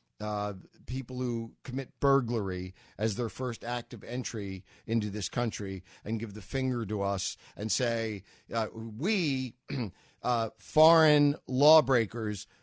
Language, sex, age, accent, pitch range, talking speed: English, male, 50-69, American, 105-150 Hz, 130 wpm